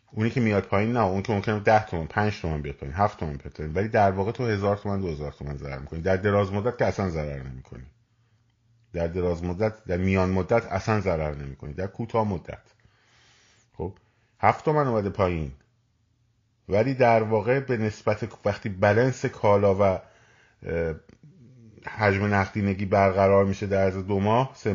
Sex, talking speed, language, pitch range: male, 165 wpm, Persian, 95-115 Hz